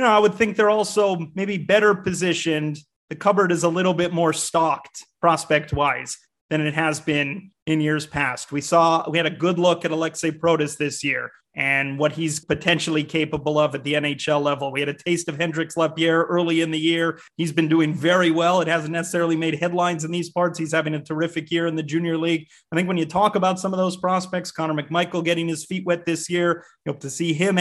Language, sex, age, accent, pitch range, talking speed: English, male, 30-49, American, 155-180 Hz, 230 wpm